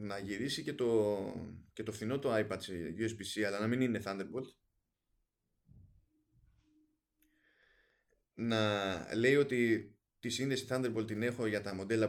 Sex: male